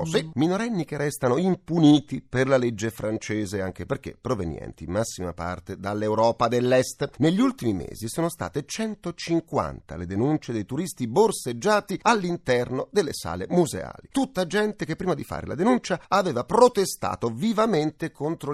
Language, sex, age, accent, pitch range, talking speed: Italian, male, 40-59, native, 115-180 Hz, 140 wpm